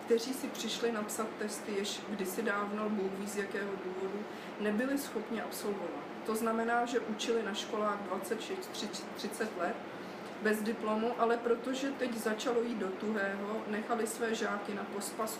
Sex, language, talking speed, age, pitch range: female, Czech, 140 wpm, 40-59, 205-235 Hz